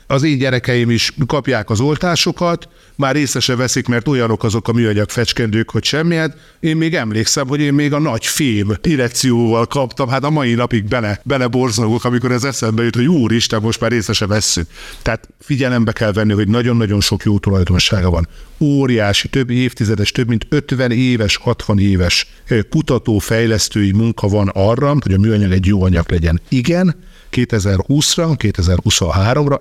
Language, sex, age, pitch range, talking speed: Hungarian, male, 50-69, 100-135 Hz, 160 wpm